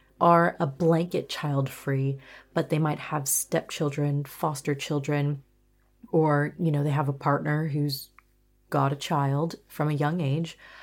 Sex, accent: female, American